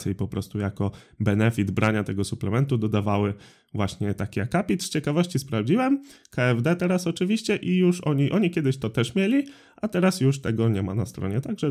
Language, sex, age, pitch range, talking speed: Polish, male, 20-39, 105-130 Hz, 180 wpm